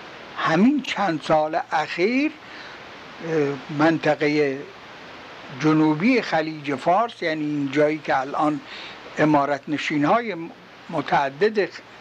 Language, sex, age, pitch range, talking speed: Persian, male, 60-79, 150-215 Hz, 80 wpm